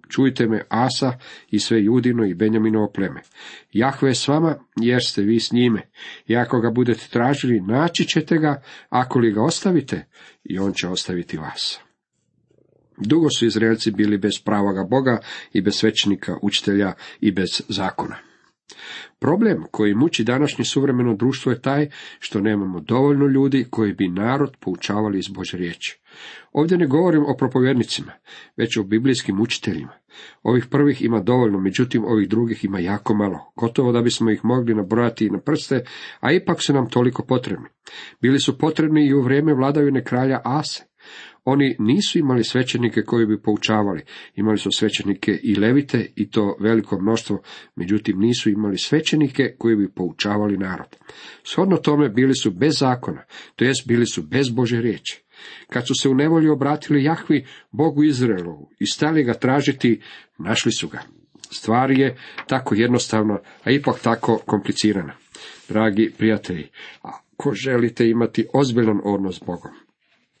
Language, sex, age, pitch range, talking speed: Croatian, male, 50-69, 105-135 Hz, 155 wpm